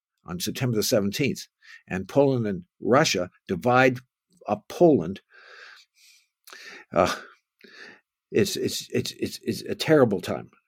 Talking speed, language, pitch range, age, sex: 110 wpm, English, 105-155 Hz, 60-79, male